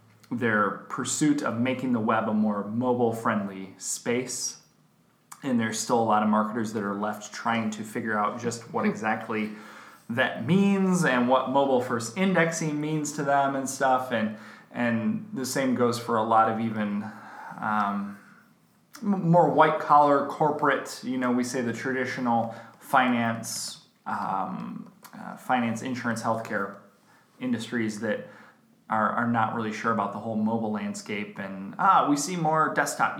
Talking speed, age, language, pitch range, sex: 150 wpm, 20-39, English, 115-145 Hz, male